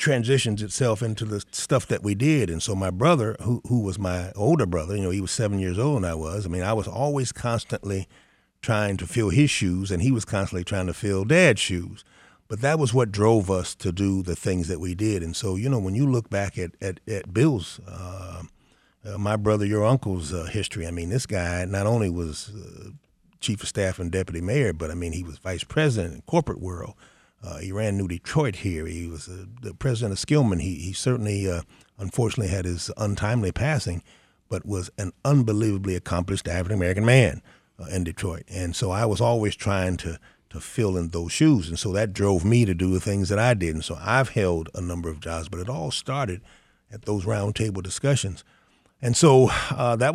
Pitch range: 90-115 Hz